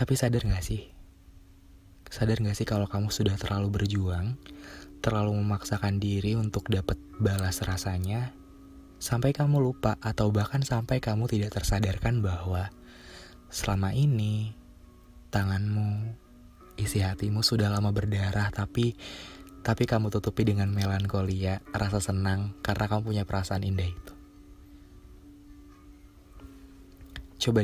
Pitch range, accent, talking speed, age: 90-105 Hz, native, 115 wpm, 20-39